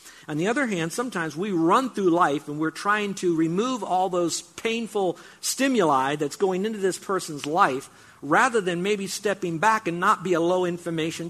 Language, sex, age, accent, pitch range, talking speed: English, male, 50-69, American, 160-200 Hz, 180 wpm